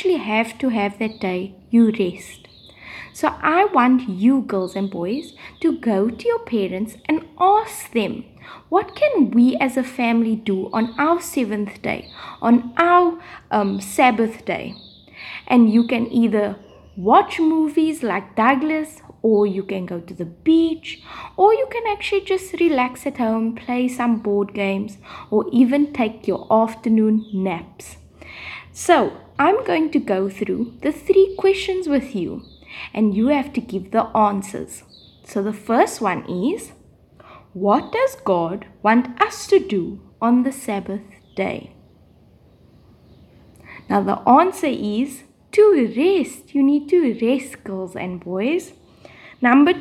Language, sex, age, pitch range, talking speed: English, female, 20-39, 210-315 Hz, 145 wpm